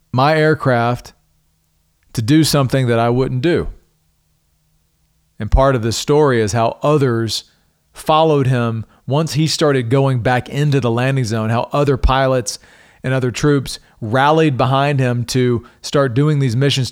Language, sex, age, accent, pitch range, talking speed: English, male, 40-59, American, 110-145 Hz, 150 wpm